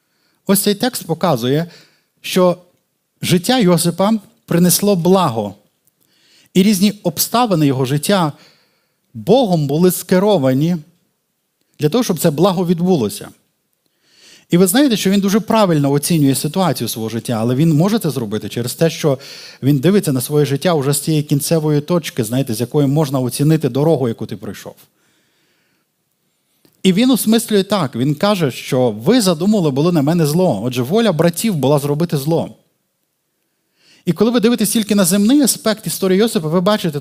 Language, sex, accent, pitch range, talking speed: Ukrainian, male, native, 140-190 Hz, 150 wpm